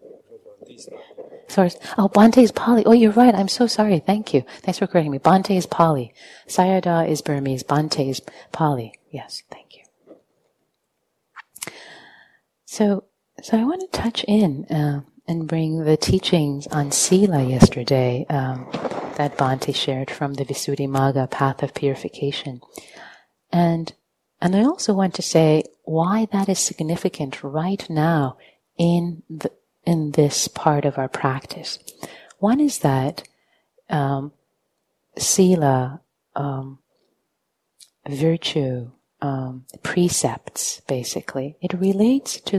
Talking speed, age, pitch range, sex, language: 125 wpm, 30-49, 140-190 Hz, female, English